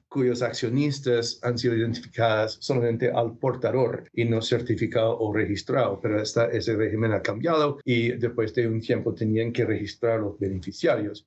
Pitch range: 115-135 Hz